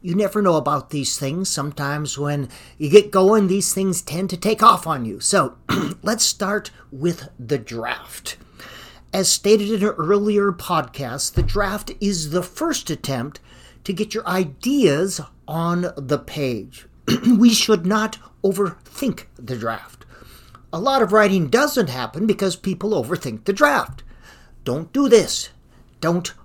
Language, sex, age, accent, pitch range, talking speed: English, male, 50-69, American, 145-215 Hz, 150 wpm